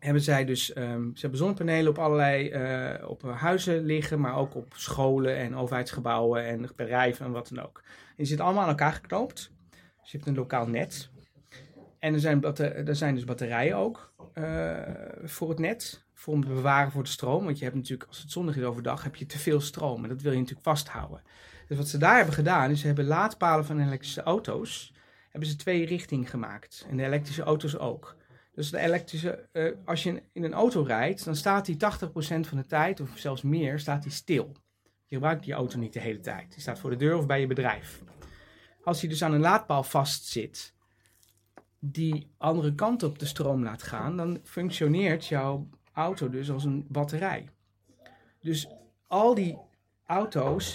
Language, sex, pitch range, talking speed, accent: Dutch, male, 130-160 Hz, 195 wpm, Dutch